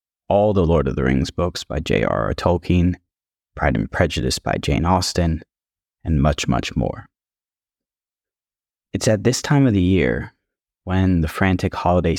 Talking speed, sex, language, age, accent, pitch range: 155 wpm, male, English, 20-39, American, 85-100 Hz